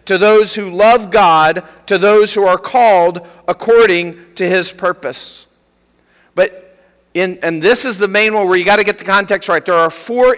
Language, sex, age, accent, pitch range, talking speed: English, male, 50-69, American, 180-225 Hz, 190 wpm